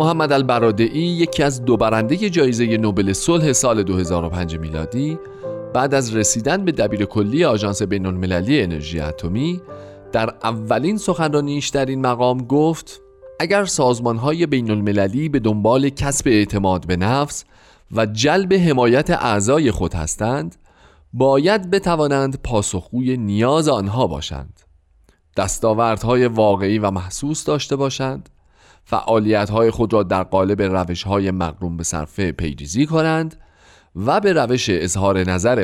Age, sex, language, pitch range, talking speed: 40-59, male, Persian, 95-140 Hz, 130 wpm